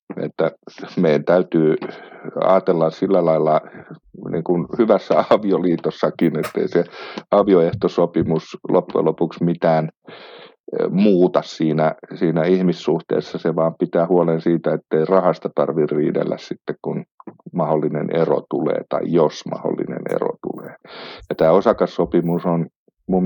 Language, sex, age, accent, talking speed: Finnish, male, 50-69, native, 115 wpm